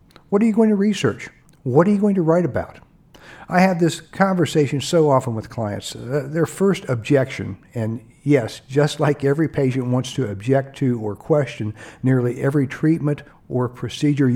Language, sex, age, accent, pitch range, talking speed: English, male, 60-79, American, 120-160 Hz, 175 wpm